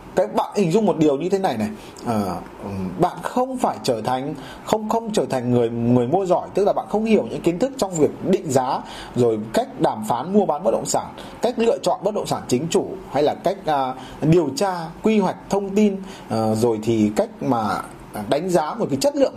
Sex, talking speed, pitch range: male, 230 wpm, 170-230 Hz